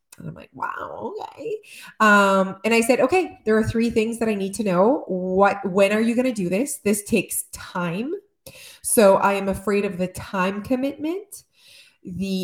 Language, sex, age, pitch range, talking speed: English, female, 20-39, 175-220 Hz, 190 wpm